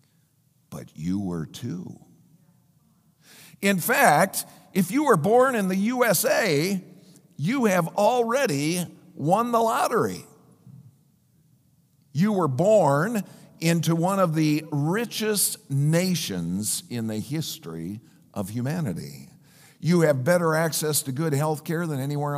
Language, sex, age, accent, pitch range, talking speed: English, male, 50-69, American, 145-185 Hz, 115 wpm